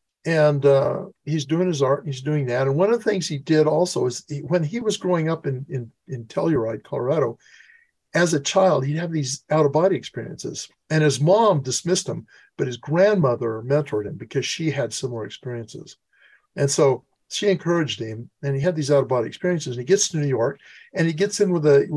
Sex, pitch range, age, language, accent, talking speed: male, 135-180 Hz, 50-69, English, American, 210 wpm